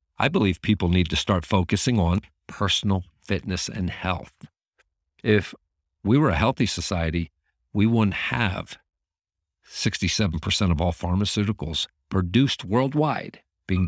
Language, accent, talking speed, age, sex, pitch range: English, American, 120 wpm, 50-69, male, 85-110 Hz